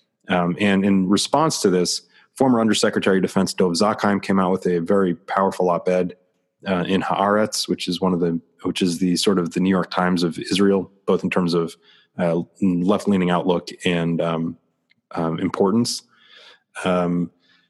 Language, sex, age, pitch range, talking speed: English, male, 30-49, 90-100 Hz, 170 wpm